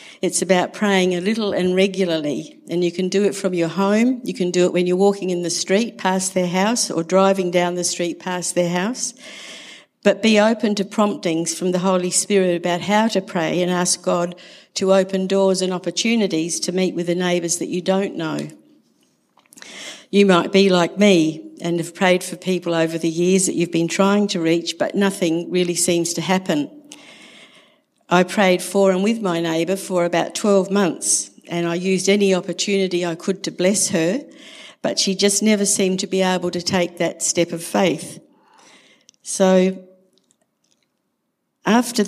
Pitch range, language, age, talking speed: 175-200 Hz, English, 60-79, 185 wpm